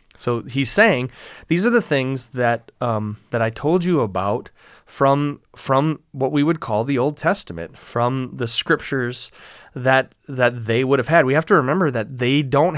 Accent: American